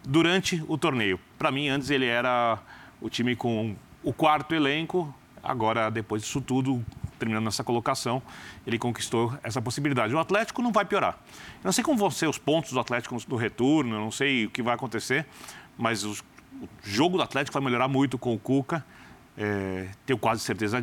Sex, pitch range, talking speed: male, 115-150 Hz, 185 wpm